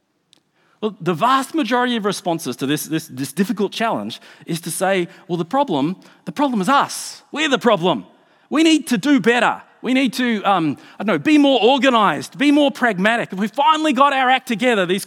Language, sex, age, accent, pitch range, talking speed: English, male, 40-59, Australian, 185-260 Hz, 205 wpm